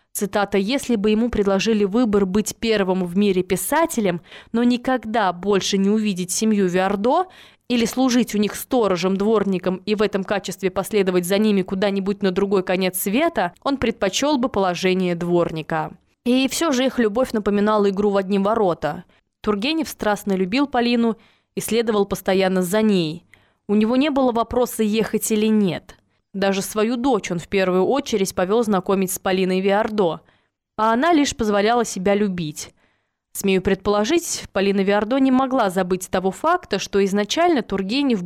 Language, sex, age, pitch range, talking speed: Russian, female, 20-39, 190-230 Hz, 150 wpm